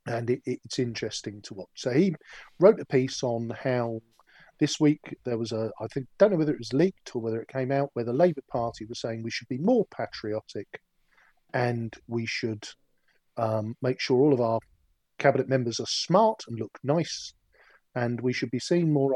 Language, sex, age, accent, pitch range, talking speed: English, male, 40-59, British, 115-135 Hz, 195 wpm